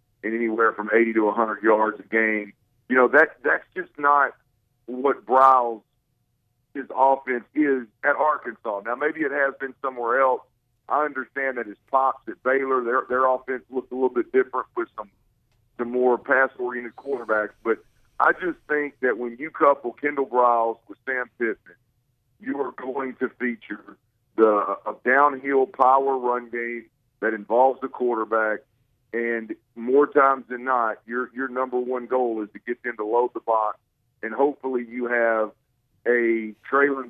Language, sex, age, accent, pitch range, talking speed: English, male, 50-69, American, 115-135 Hz, 165 wpm